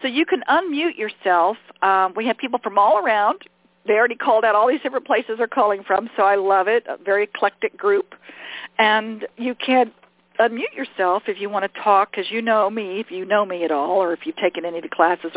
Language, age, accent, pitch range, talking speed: English, 50-69, American, 185-225 Hz, 230 wpm